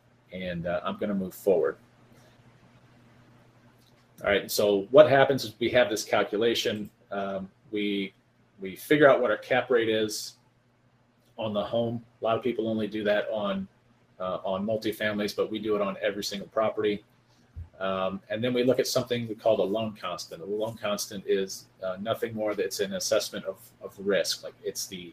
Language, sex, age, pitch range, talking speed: English, male, 40-59, 100-125 Hz, 185 wpm